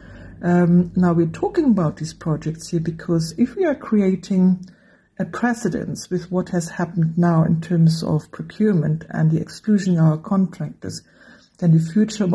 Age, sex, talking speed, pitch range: 60-79, female, 160 wpm, 160-195 Hz